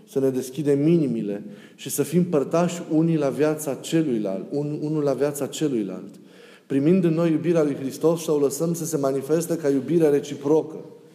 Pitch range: 135-170 Hz